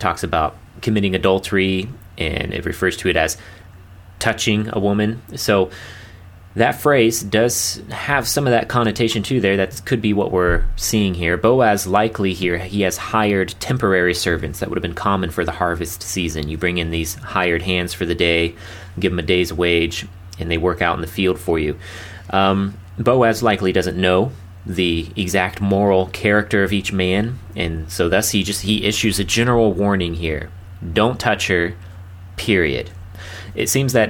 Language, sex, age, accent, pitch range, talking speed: English, male, 30-49, American, 90-105 Hz, 180 wpm